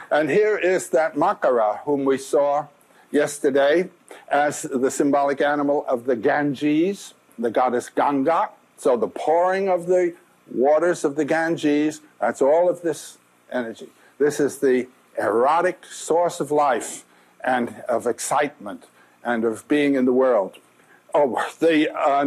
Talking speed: 140 wpm